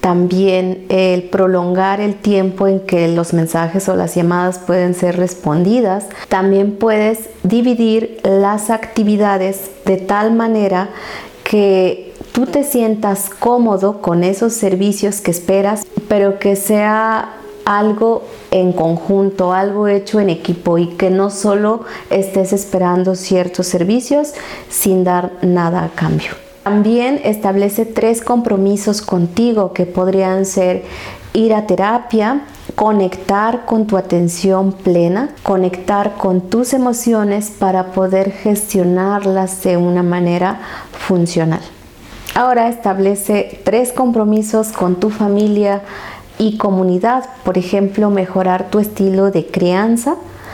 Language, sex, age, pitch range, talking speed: Spanish, female, 40-59, 180-215 Hz, 120 wpm